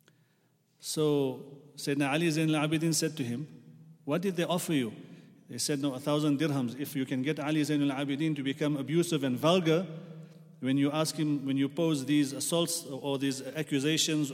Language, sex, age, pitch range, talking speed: English, male, 40-59, 140-165 Hz, 180 wpm